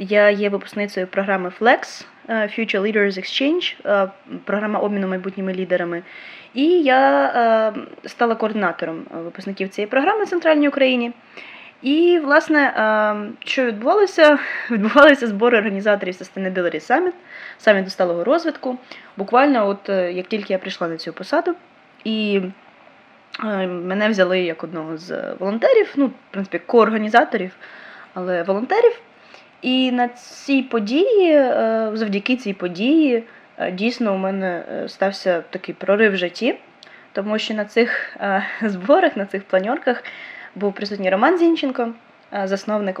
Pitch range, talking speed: 190-265 Hz, 120 wpm